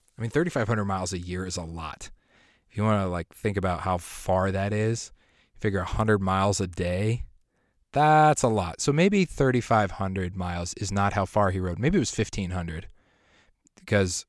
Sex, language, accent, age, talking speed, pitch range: male, English, American, 20-39, 180 wpm, 90-110 Hz